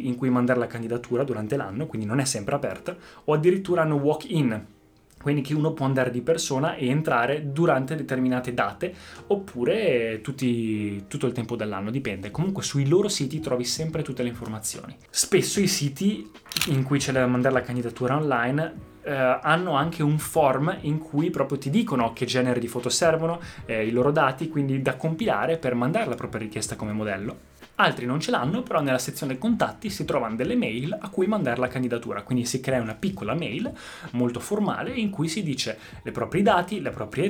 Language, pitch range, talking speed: Italian, 120-150 Hz, 190 wpm